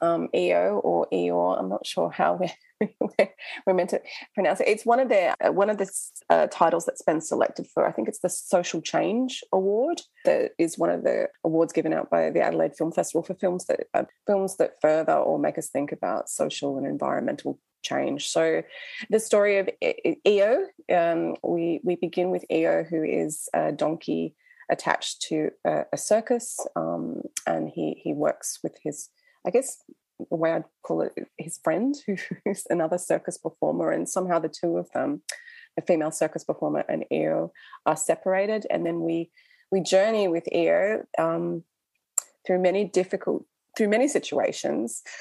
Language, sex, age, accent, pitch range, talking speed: English, female, 20-39, Australian, 165-220 Hz, 180 wpm